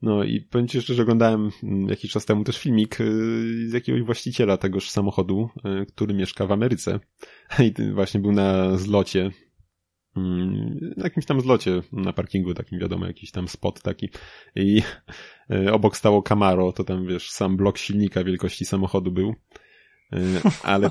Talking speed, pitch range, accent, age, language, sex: 150 wpm, 95-105 Hz, native, 20-39, Polish, male